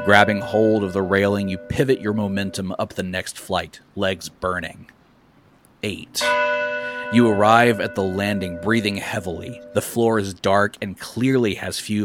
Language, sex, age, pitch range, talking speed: English, male, 30-49, 95-110 Hz, 155 wpm